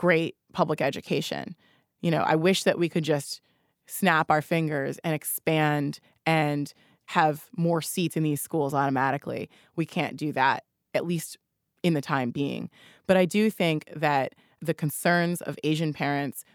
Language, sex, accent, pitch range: English, female, American, 150-175 Hz